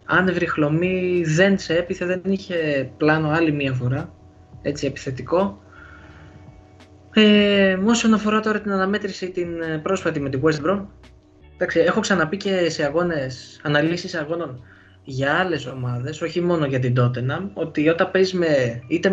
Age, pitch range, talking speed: 20-39, 125-175 Hz, 140 wpm